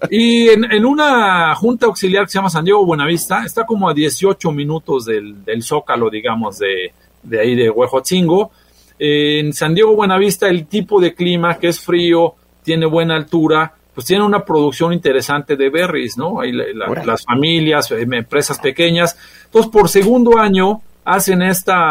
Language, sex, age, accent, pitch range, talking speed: Spanish, male, 40-59, Mexican, 150-210 Hz, 160 wpm